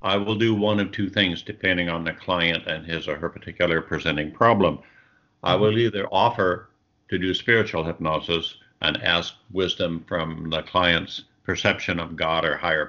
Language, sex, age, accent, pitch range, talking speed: English, male, 60-79, American, 85-105 Hz, 170 wpm